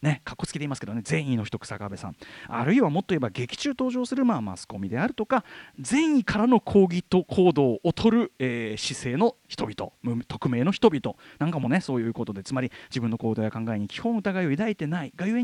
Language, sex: Japanese, male